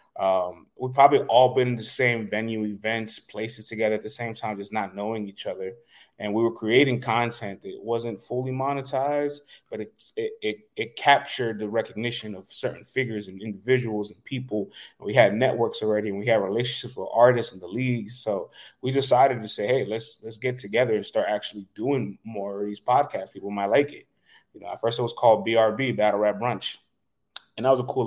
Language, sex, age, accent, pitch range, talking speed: English, male, 20-39, American, 105-125 Hz, 205 wpm